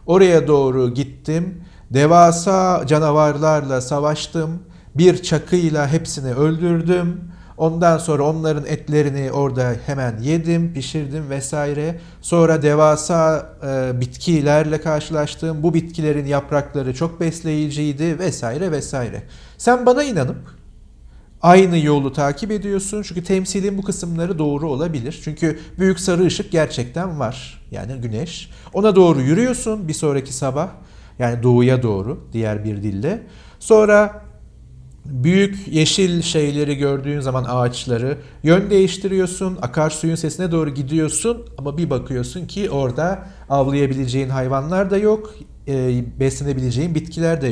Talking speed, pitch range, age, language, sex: 110 wpm, 135-170 Hz, 50-69, Turkish, male